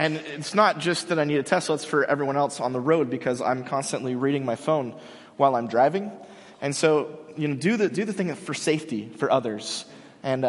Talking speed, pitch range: 230 wpm, 135-185 Hz